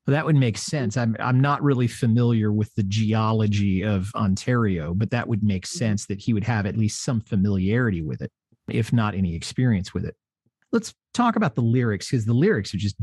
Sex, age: male, 40-59